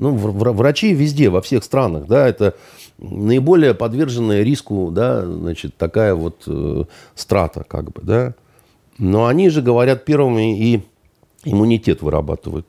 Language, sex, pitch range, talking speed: Russian, male, 90-140 Hz, 130 wpm